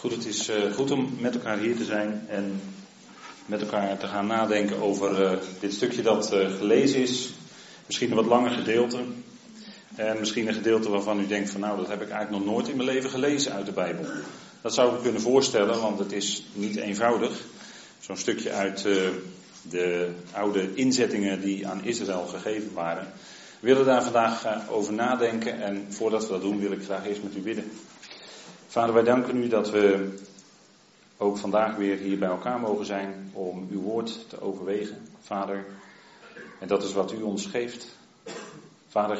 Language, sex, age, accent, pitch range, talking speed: Dutch, male, 40-59, Dutch, 95-115 Hz, 180 wpm